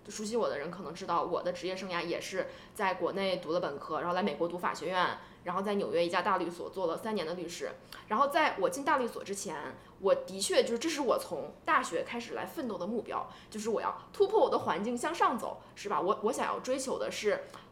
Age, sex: 20-39, female